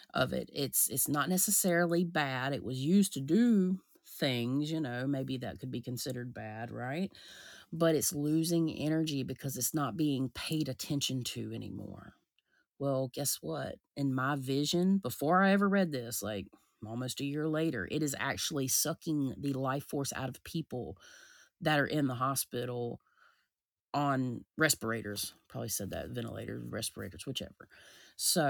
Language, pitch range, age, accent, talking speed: English, 125-160 Hz, 30-49, American, 155 wpm